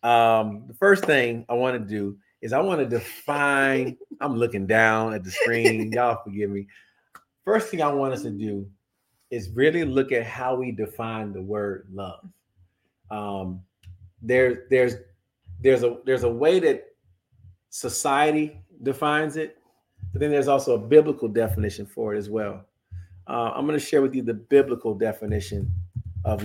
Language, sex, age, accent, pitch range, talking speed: English, male, 40-59, American, 100-130 Hz, 165 wpm